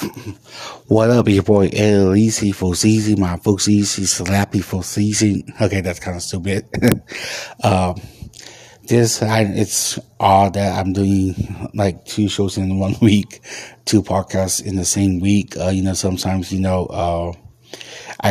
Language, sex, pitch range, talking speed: English, male, 95-105 Hz, 140 wpm